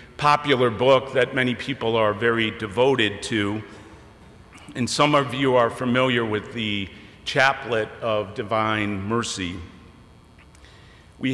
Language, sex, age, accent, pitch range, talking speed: English, male, 50-69, American, 105-135 Hz, 115 wpm